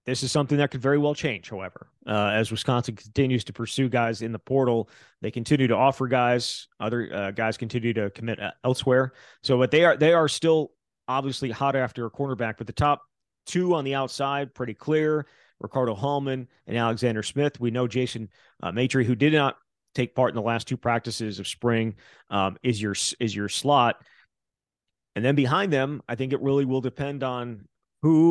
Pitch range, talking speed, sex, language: 115-135 Hz, 195 wpm, male, English